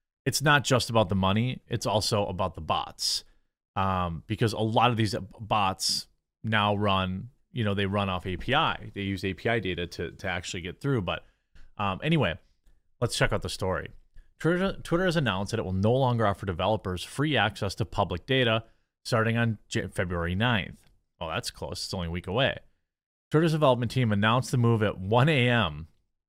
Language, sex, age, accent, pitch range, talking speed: English, male, 30-49, American, 100-125 Hz, 185 wpm